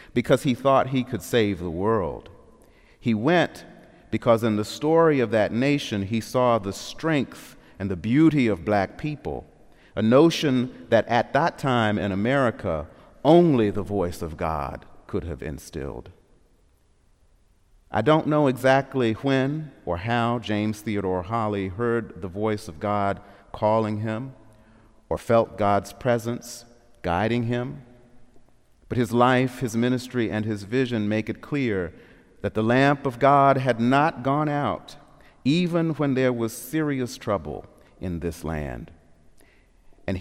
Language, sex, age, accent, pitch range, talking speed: English, male, 40-59, American, 105-140 Hz, 145 wpm